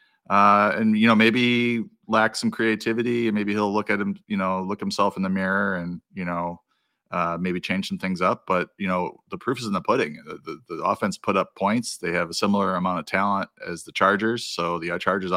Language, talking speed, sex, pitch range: English, 235 wpm, male, 90-105 Hz